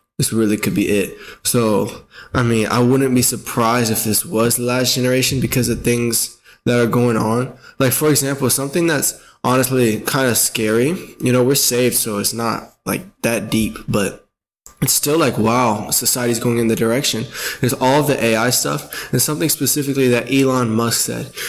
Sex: male